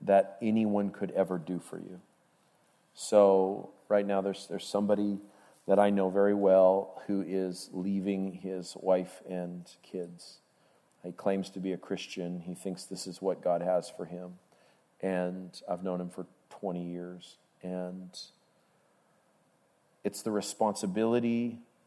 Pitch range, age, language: 90-100 Hz, 40-59, English